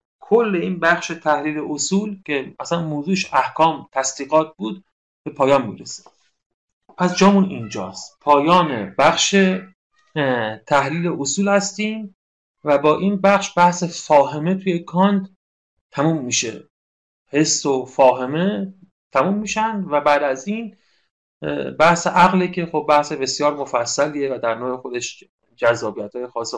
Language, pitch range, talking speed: Persian, 135-185 Hz, 120 wpm